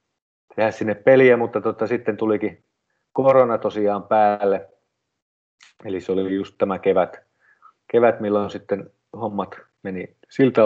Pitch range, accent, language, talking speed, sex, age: 95-125 Hz, native, Finnish, 125 wpm, male, 30-49